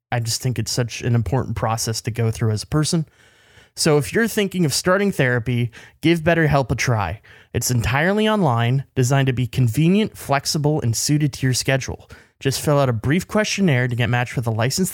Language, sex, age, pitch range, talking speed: English, male, 20-39, 115-170 Hz, 200 wpm